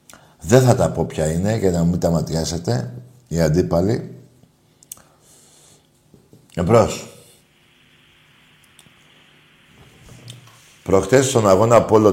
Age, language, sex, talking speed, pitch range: 60-79, Greek, male, 90 wpm, 85-125 Hz